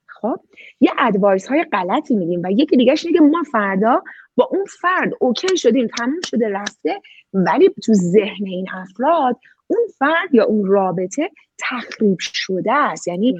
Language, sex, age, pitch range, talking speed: Persian, female, 30-49, 195-310 Hz, 150 wpm